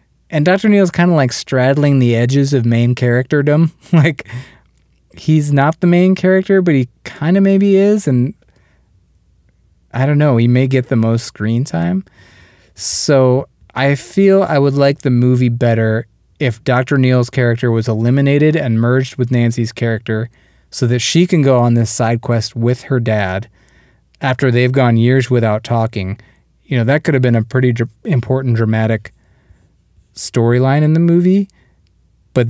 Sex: male